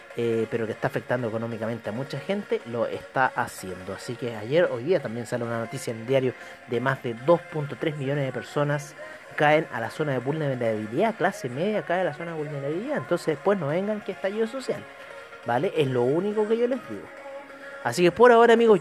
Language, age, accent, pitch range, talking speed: Spanish, 30-49, Argentinian, 125-175 Hz, 205 wpm